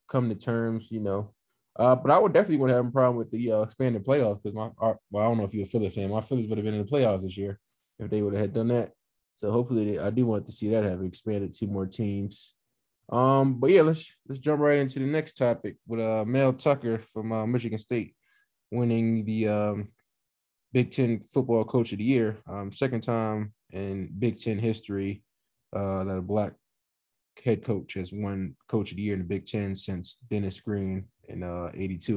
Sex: male